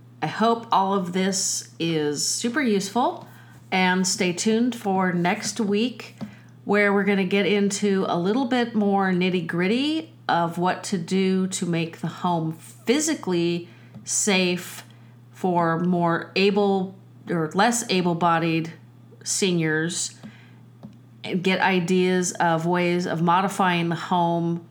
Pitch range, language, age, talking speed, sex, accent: 165-195 Hz, English, 40-59, 125 wpm, female, American